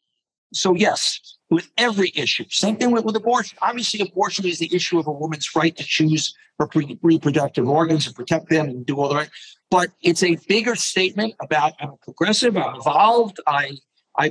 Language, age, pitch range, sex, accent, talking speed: English, 50-69, 155-200 Hz, male, American, 190 wpm